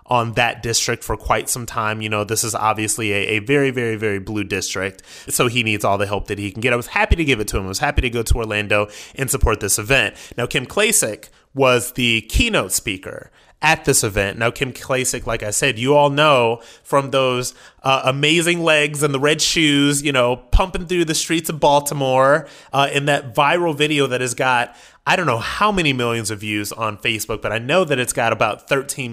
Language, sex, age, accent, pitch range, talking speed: English, male, 30-49, American, 115-155 Hz, 225 wpm